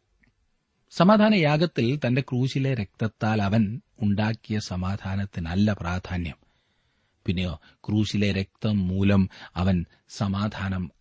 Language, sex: Malayalam, male